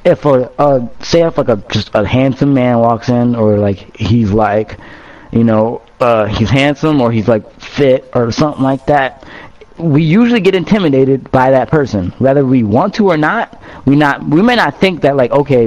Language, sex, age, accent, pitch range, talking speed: English, male, 20-39, American, 115-155 Hz, 200 wpm